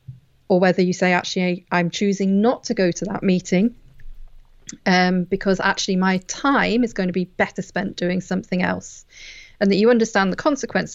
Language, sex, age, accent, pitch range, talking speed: English, female, 40-59, British, 180-215 Hz, 180 wpm